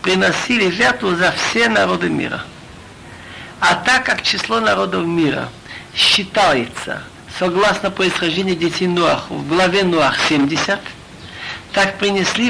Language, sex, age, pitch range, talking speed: Russian, male, 60-79, 190-235 Hz, 110 wpm